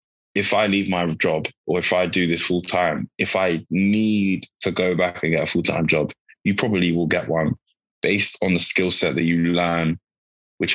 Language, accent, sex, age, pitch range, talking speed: English, British, male, 10-29, 85-95 Hz, 205 wpm